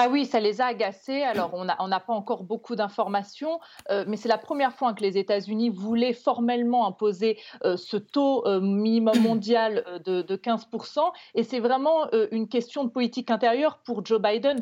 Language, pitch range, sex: French, 210-250 Hz, female